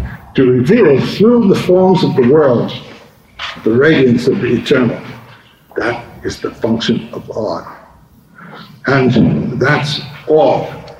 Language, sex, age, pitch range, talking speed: English, male, 60-79, 125-170 Hz, 120 wpm